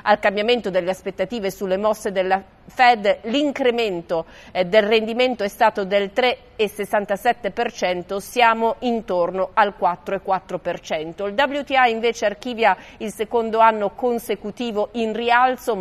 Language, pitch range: Italian, 190-235 Hz